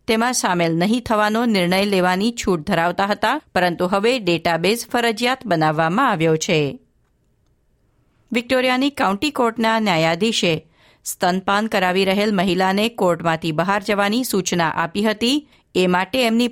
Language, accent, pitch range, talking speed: Gujarati, native, 175-230 Hz, 120 wpm